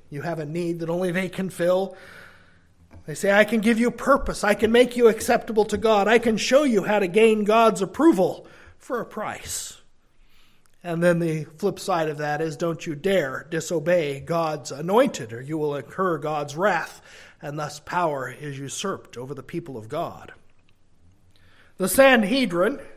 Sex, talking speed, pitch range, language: male, 175 wpm, 155-215 Hz, English